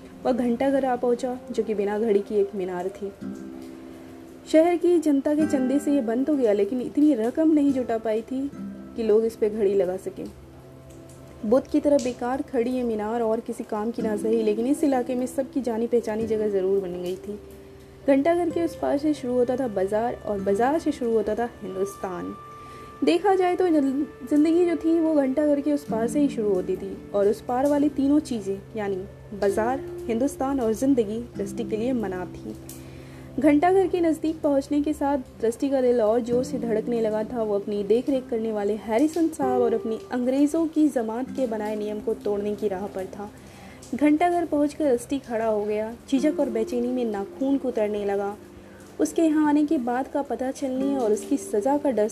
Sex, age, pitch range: female, 30-49, 205-280 Hz